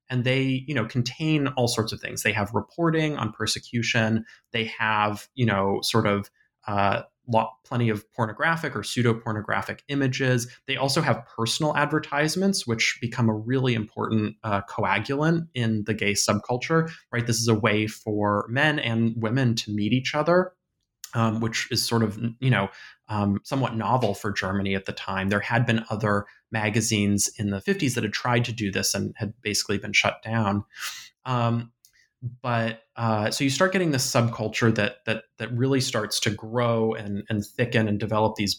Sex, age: male, 20-39